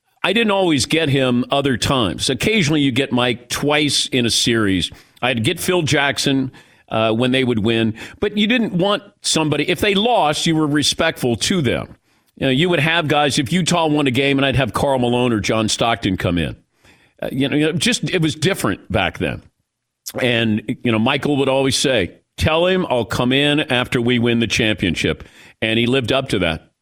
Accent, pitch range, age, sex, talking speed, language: American, 115-155 Hz, 50-69, male, 200 wpm, English